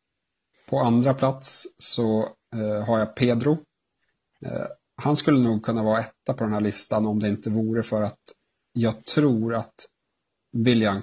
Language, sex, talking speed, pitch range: Swedish, male, 145 wpm, 105-115 Hz